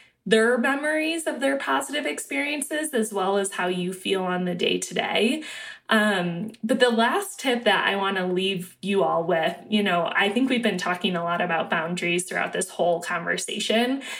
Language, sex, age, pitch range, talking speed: English, female, 20-39, 190-260 Hz, 180 wpm